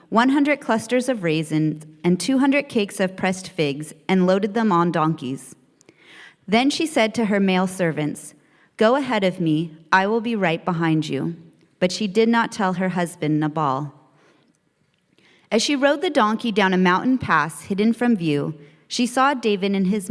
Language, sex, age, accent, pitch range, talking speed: English, female, 30-49, American, 160-230 Hz, 170 wpm